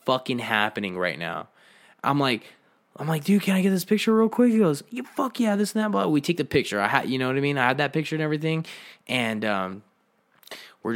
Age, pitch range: 20-39, 115-180 Hz